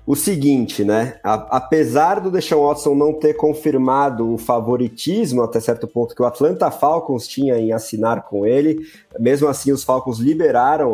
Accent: Brazilian